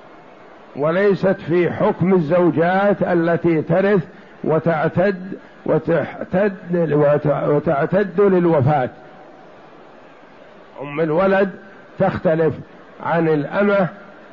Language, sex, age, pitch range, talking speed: Arabic, male, 60-79, 155-190 Hz, 60 wpm